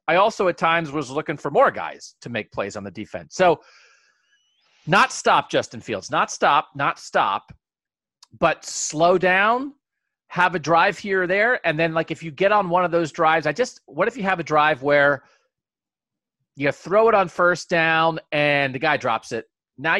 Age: 40-59